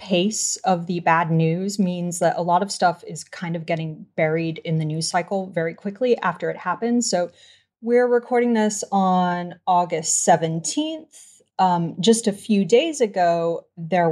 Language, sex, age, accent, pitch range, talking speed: English, female, 30-49, American, 165-200 Hz, 165 wpm